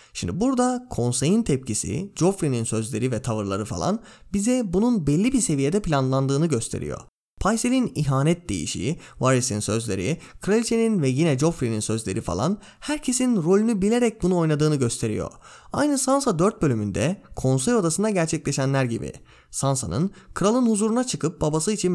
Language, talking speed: Turkish, 130 wpm